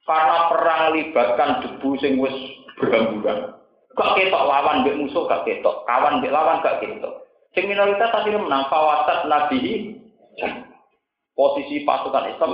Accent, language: native, Indonesian